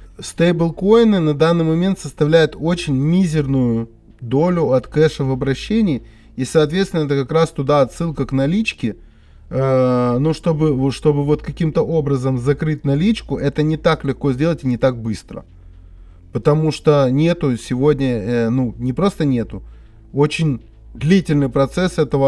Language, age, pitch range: Russian, 20-39, 130-165 Hz